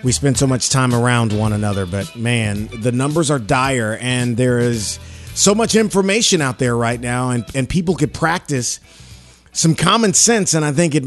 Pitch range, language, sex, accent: 105-130 Hz, English, male, American